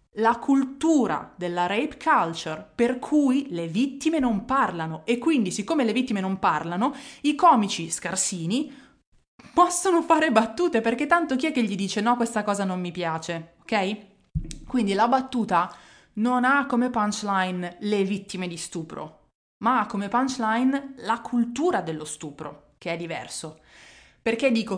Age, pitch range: 20-39, 190-255 Hz